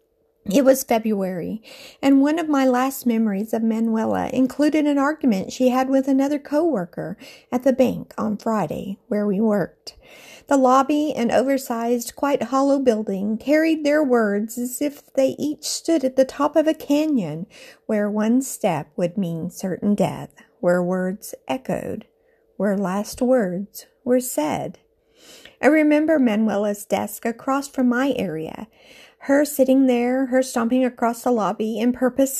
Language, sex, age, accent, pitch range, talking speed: English, female, 50-69, American, 220-295 Hz, 150 wpm